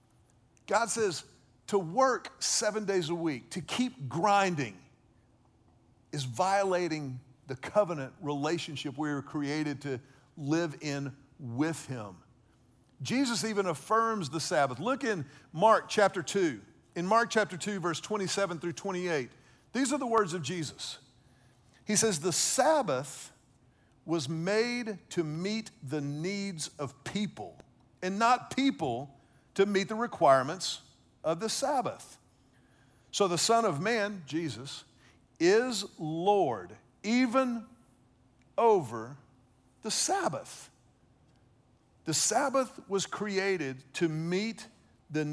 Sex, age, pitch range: male, 50-69, 130-200 Hz